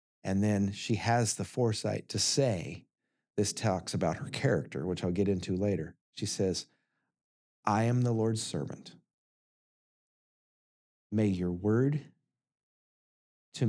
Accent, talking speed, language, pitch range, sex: American, 125 wpm, English, 95-130 Hz, male